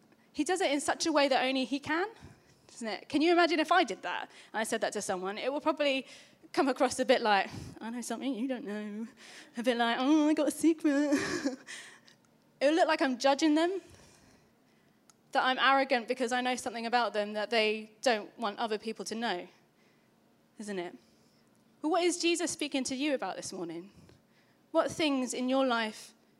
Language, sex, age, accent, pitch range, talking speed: English, female, 20-39, British, 225-295 Hz, 200 wpm